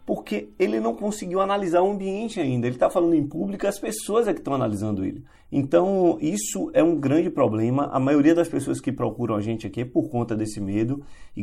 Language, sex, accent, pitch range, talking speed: Portuguese, male, Brazilian, 110-165 Hz, 215 wpm